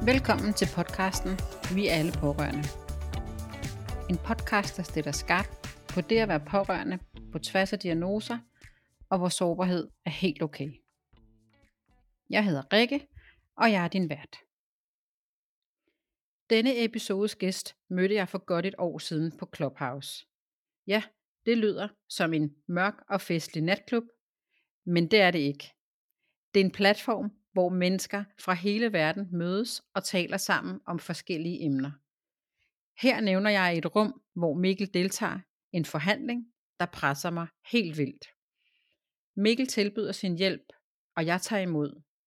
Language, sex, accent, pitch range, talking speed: Danish, female, native, 155-200 Hz, 140 wpm